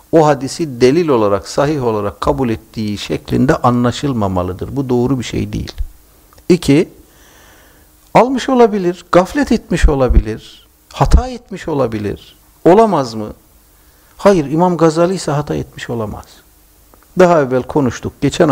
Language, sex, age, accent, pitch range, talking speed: Turkish, male, 60-79, native, 105-170 Hz, 120 wpm